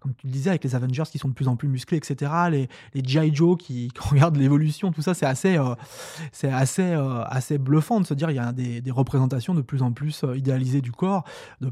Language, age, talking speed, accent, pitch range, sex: French, 20-39, 245 wpm, French, 135-180 Hz, male